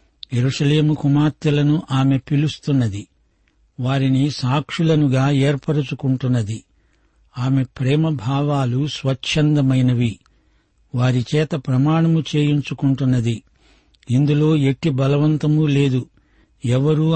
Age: 60-79